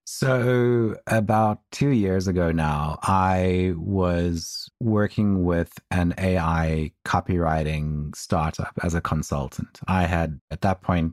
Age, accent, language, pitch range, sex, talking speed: 30-49, American, English, 80-90 Hz, male, 120 wpm